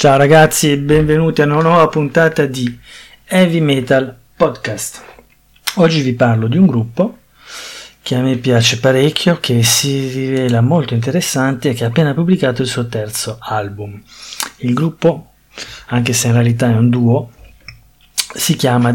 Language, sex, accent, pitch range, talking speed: Italian, male, native, 120-145 Hz, 150 wpm